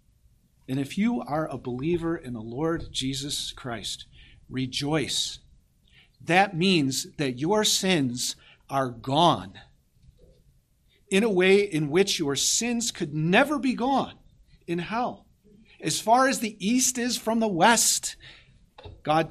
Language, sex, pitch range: English, male, 130-170 Hz